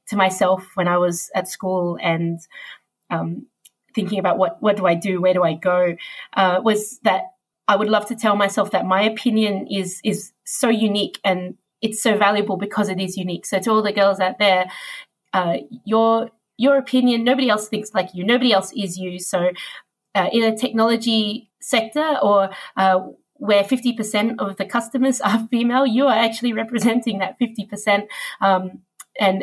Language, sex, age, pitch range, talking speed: English, female, 30-49, 185-220 Hz, 175 wpm